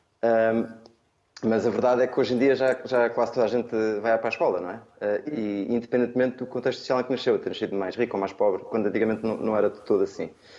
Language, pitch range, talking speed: Portuguese, 110-130 Hz, 245 wpm